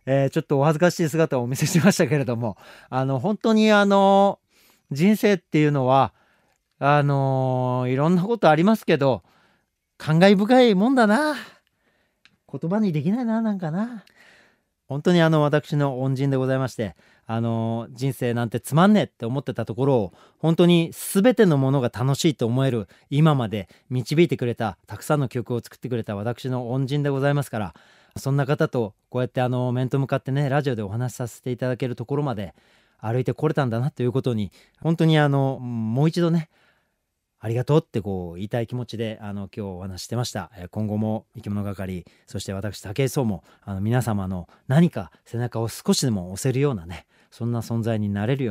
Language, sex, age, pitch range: Japanese, male, 40-59, 110-150 Hz